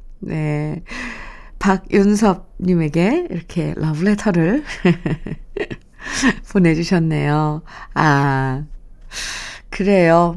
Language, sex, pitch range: Korean, female, 155-220 Hz